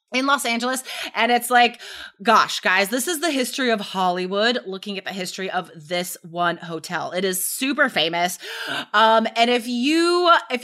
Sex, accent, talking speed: female, American, 175 wpm